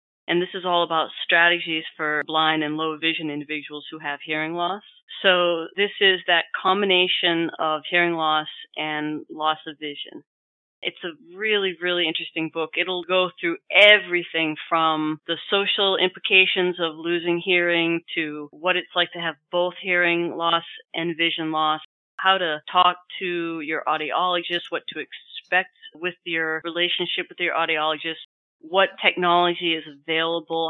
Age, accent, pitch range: 30-49, American, 155-180 Hz